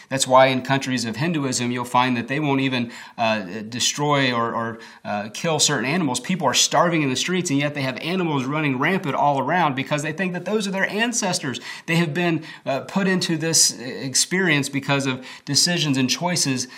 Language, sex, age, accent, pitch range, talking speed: English, male, 30-49, American, 125-160 Hz, 200 wpm